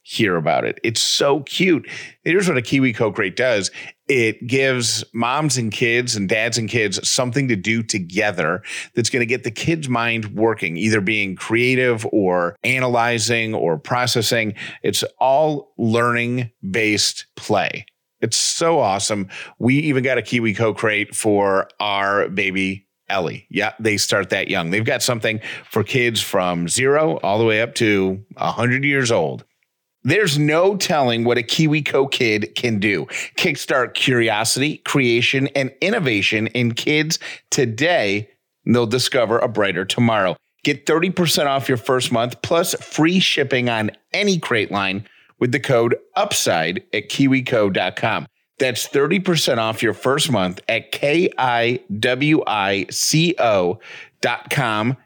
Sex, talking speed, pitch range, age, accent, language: male, 140 wpm, 110-135 Hz, 30-49, American, English